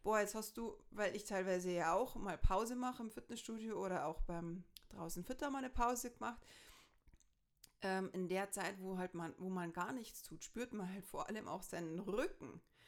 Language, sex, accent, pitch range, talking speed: German, female, German, 190-245 Hz, 195 wpm